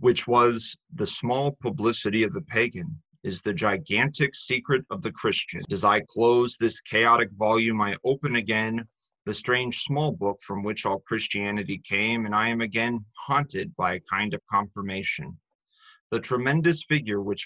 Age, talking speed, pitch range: 30-49, 160 wpm, 105-130 Hz